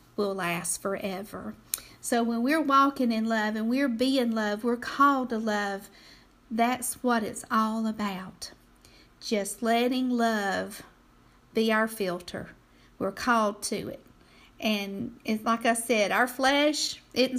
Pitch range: 215-260 Hz